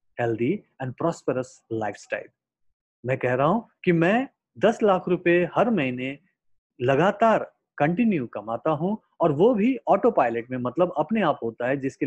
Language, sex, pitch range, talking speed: Hindi, male, 125-180 Hz, 100 wpm